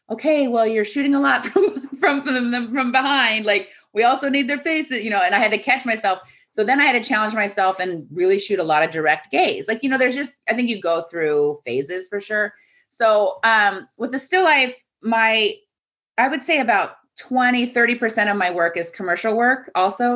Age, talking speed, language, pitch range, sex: 30-49, 215 wpm, English, 170-240 Hz, female